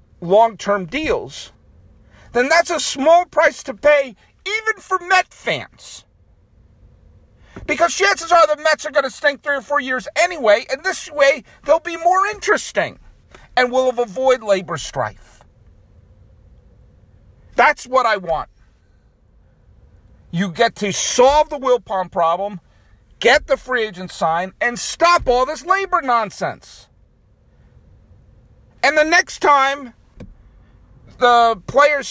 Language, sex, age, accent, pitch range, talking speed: English, male, 50-69, American, 185-290 Hz, 125 wpm